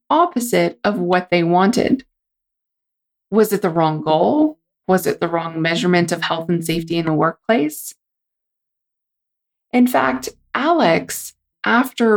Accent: American